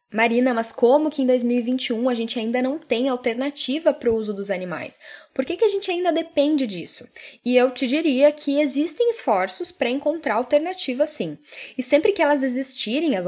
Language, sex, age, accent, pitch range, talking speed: Portuguese, female, 10-29, Brazilian, 235-300 Hz, 190 wpm